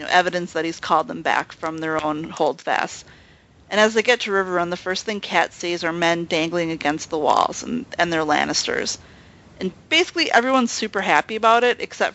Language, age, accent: English, 30-49, American